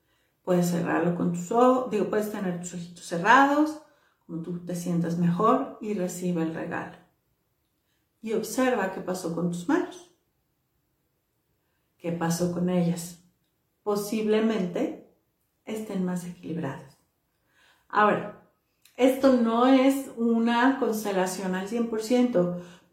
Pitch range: 185-235 Hz